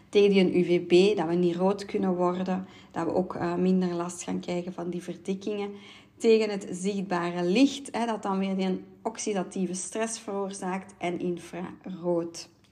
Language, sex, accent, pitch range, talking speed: Dutch, female, Dutch, 175-210 Hz, 155 wpm